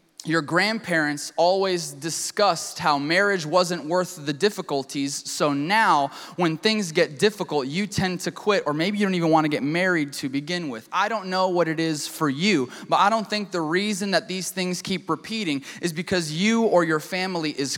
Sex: male